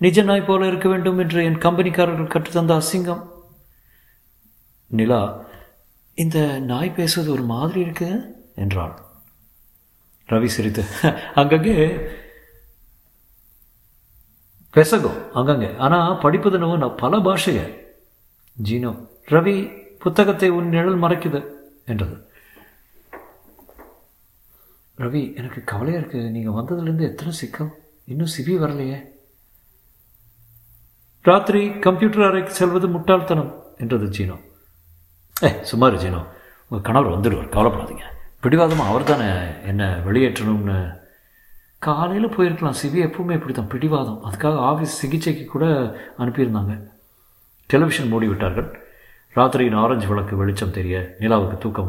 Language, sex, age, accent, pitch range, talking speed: Tamil, male, 50-69, native, 105-175 Hz, 100 wpm